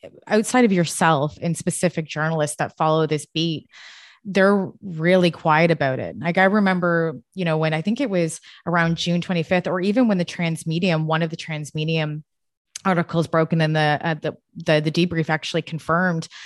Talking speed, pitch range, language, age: 185 wpm, 160-185 Hz, English, 20-39